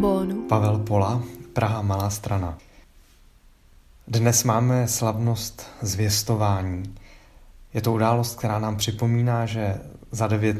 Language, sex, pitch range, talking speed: Czech, male, 105-120 Hz, 100 wpm